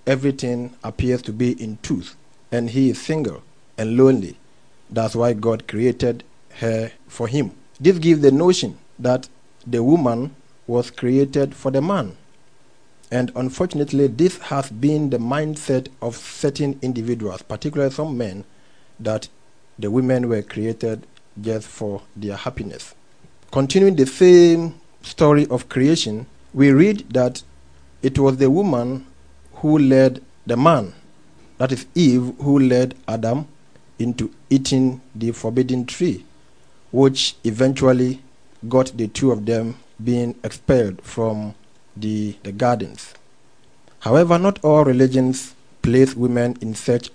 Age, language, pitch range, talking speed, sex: 50-69, English, 115-140 Hz, 130 wpm, male